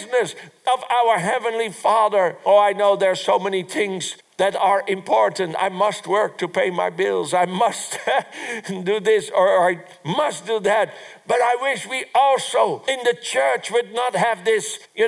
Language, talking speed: English, 175 wpm